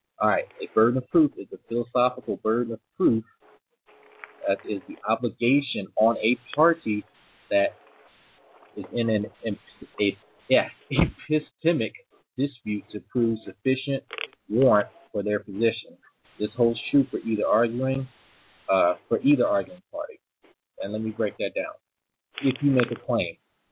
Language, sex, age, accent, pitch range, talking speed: English, male, 30-49, American, 105-135 Hz, 130 wpm